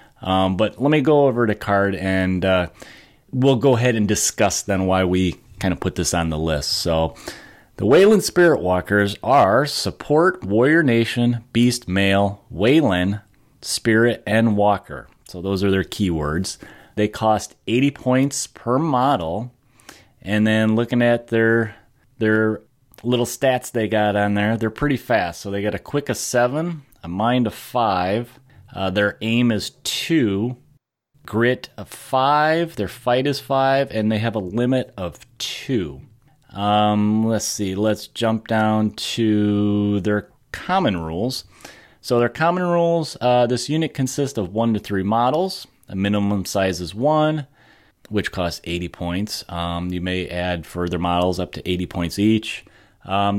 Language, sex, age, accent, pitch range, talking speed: English, male, 30-49, American, 100-125 Hz, 155 wpm